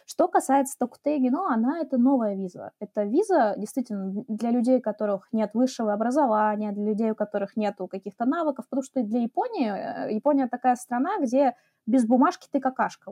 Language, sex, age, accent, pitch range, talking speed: Russian, female, 20-39, native, 210-275 Hz, 170 wpm